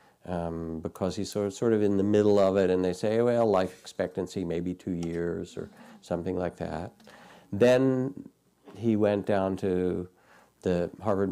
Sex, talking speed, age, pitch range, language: male, 165 wpm, 50-69, 90-105 Hz, English